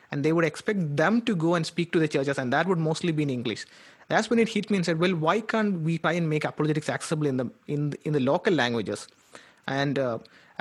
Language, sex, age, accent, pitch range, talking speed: English, male, 30-49, Indian, 145-175 Hz, 250 wpm